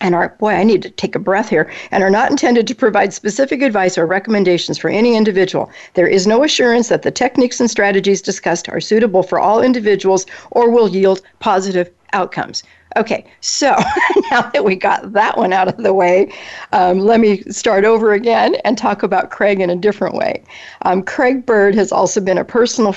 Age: 50-69